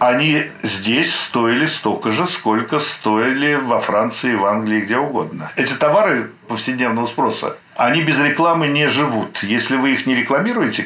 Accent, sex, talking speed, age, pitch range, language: native, male, 150 wpm, 60-79, 120-160 Hz, Russian